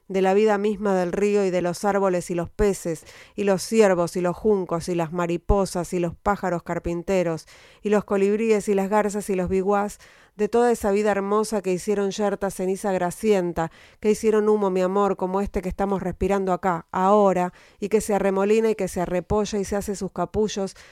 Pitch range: 180-205 Hz